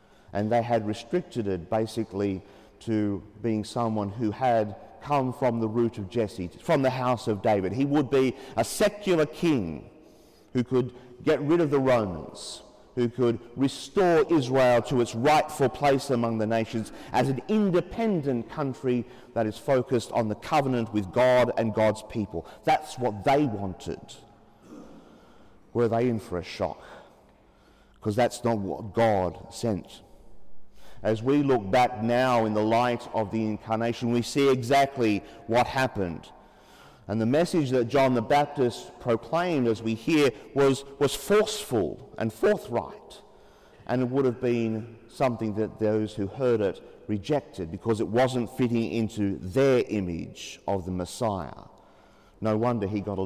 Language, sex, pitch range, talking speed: English, male, 105-130 Hz, 155 wpm